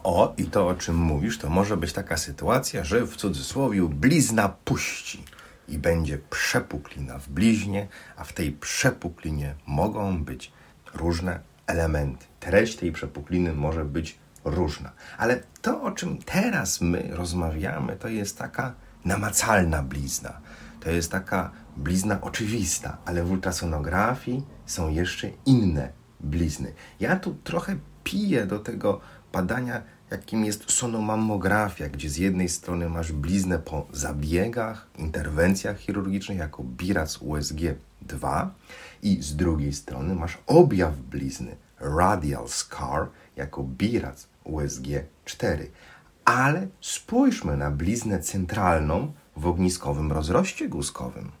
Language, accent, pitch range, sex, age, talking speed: Polish, native, 75-100 Hz, male, 40-59, 120 wpm